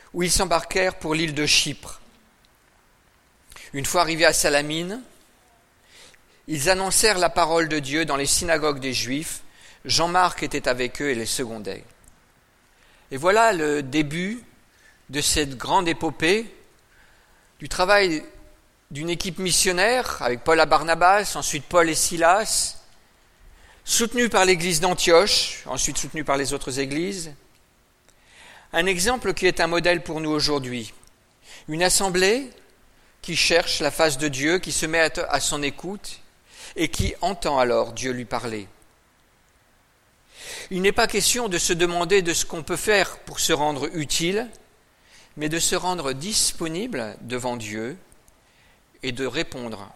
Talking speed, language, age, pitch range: 140 wpm, French, 50-69, 130-180 Hz